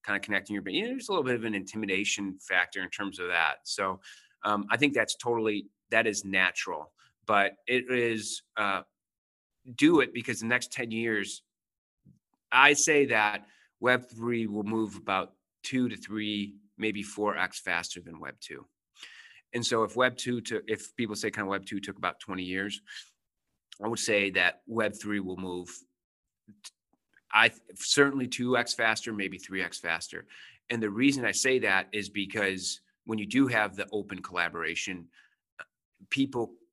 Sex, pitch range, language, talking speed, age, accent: male, 95-120 Hz, English, 165 wpm, 30-49, American